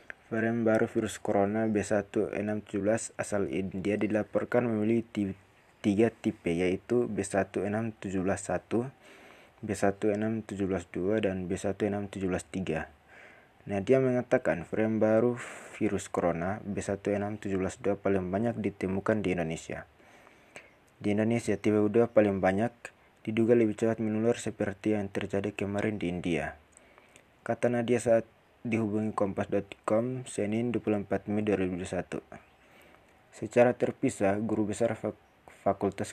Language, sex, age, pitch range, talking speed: Indonesian, male, 20-39, 100-110 Hz, 95 wpm